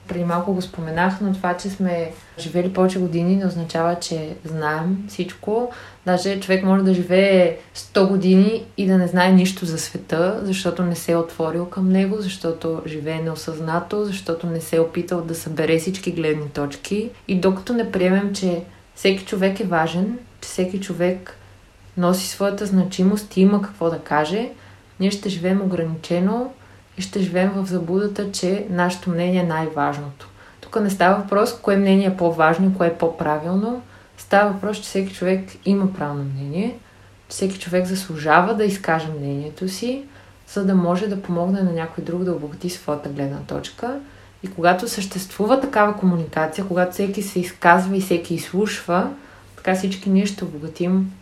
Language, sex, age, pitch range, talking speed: Bulgarian, female, 20-39, 165-195 Hz, 165 wpm